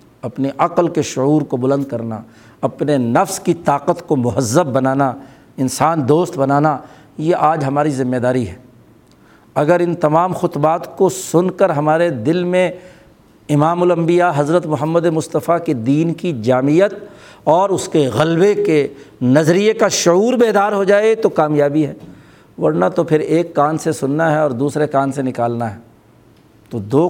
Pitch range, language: 135-175 Hz, Urdu